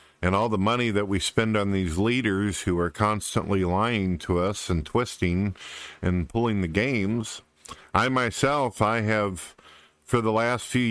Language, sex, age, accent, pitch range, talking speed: English, male, 50-69, American, 90-110 Hz, 165 wpm